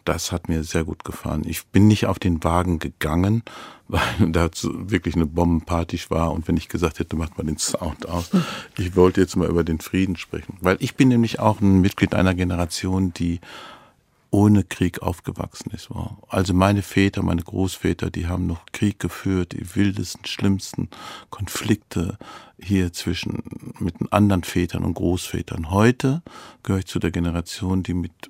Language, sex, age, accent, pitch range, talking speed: German, male, 50-69, German, 85-100 Hz, 170 wpm